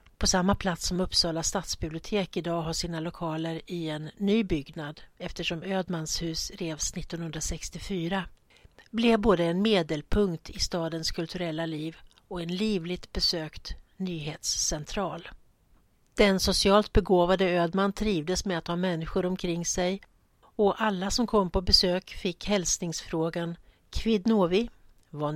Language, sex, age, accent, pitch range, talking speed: Swedish, female, 60-79, native, 165-195 Hz, 125 wpm